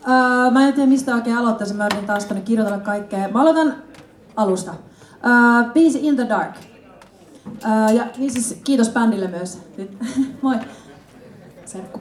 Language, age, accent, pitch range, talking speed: Finnish, 30-49, native, 195-255 Hz, 145 wpm